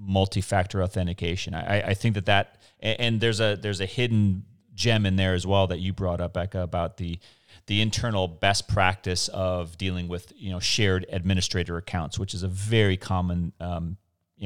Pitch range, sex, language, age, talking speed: 90-105 Hz, male, English, 30-49, 185 wpm